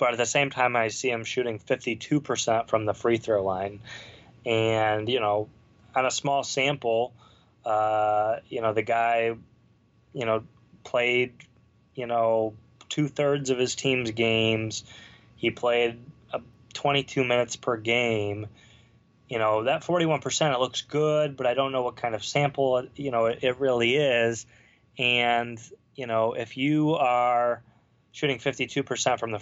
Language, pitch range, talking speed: English, 110-125 Hz, 155 wpm